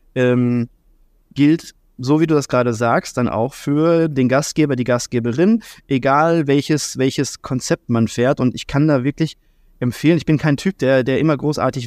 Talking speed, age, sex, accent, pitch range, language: 175 wpm, 20-39, male, German, 125-160 Hz, German